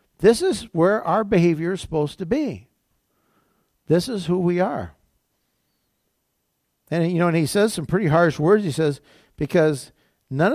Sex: male